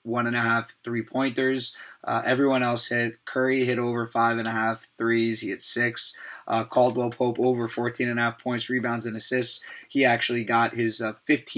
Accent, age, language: American, 20-39, English